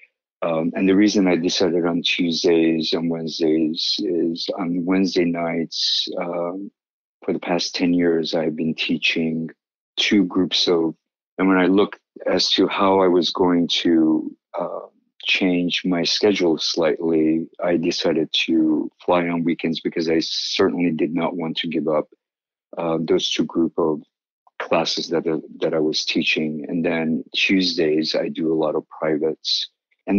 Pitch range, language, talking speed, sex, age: 80-100 Hz, English, 155 wpm, male, 50-69